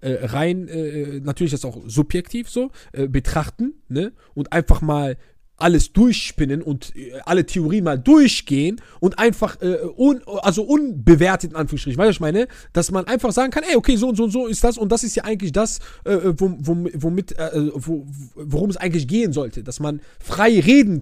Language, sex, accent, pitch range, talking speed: German, male, German, 155-235 Hz, 195 wpm